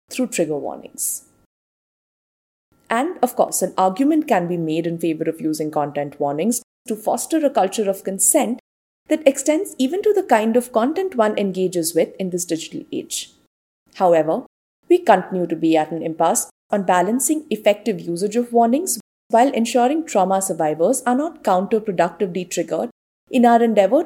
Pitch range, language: 175-260 Hz, English